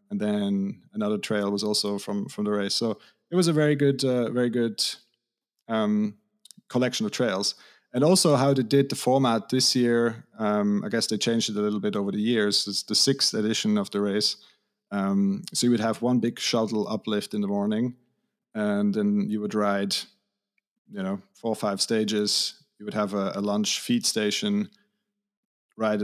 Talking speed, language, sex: 190 wpm, English, male